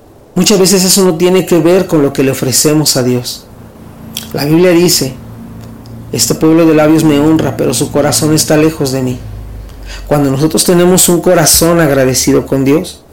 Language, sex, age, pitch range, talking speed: Spanish, male, 40-59, 135-170 Hz, 175 wpm